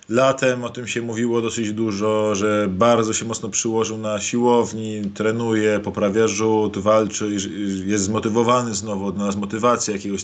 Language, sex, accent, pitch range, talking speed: Polish, male, native, 110-135 Hz, 145 wpm